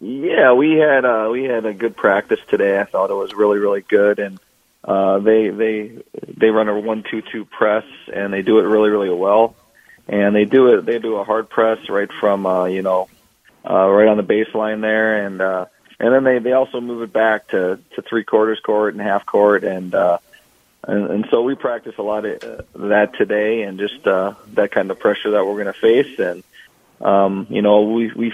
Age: 40-59